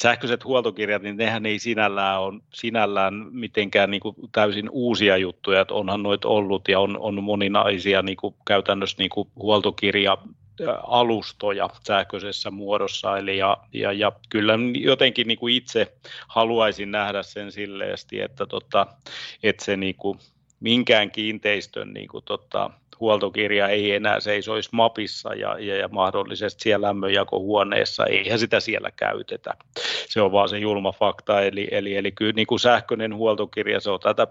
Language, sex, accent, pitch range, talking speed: Finnish, male, native, 100-110 Hz, 140 wpm